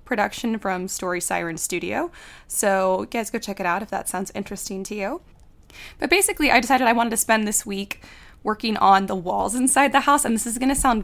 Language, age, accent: English, 20-39, American